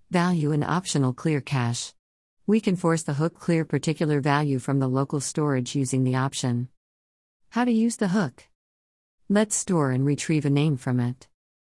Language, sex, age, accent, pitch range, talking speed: English, female, 50-69, American, 120-165 Hz, 170 wpm